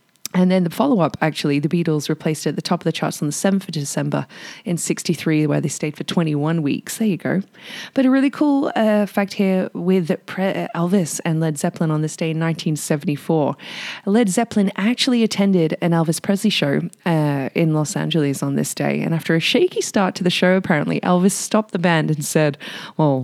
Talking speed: 205 wpm